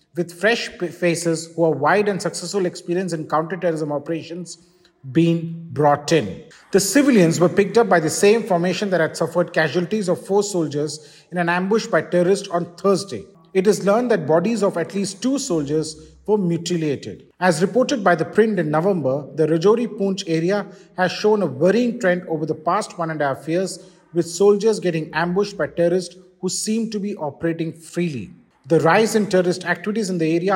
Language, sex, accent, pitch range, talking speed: English, male, Indian, 160-195 Hz, 185 wpm